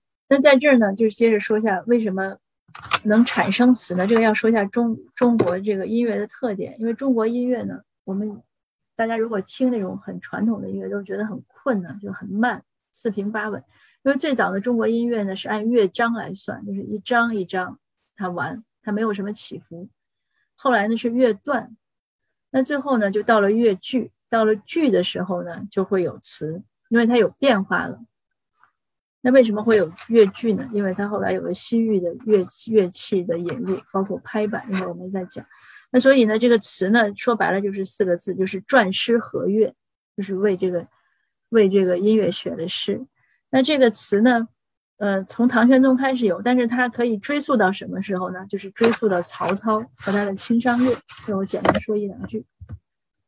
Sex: female